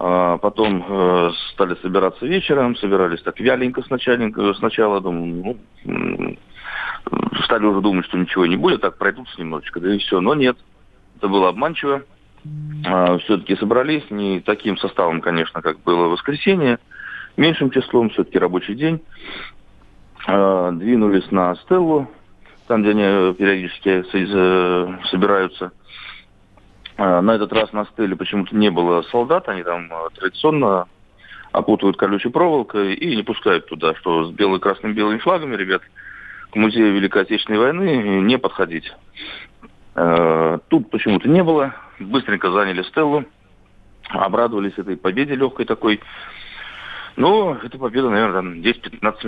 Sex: male